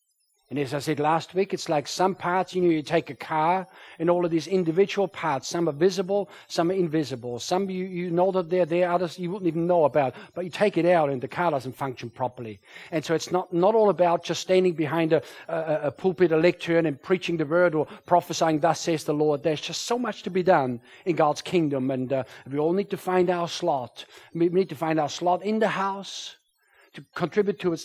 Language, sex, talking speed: English, male, 235 wpm